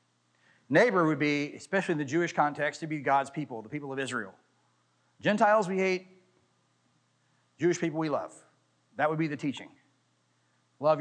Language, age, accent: English, 40-59, American